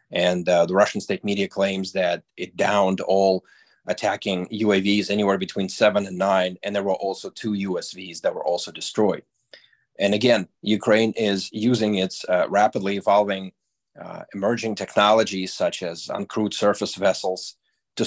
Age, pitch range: 30-49, 95-105 Hz